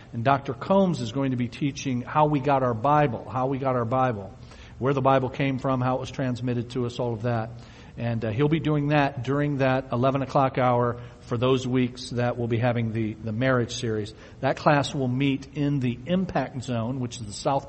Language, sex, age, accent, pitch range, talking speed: English, male, 50-69, American, 120-145 Hz, 225 wpm